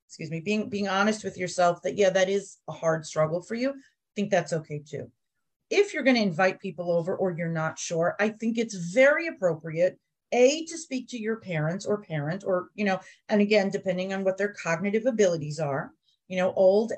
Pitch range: 180-260 Hz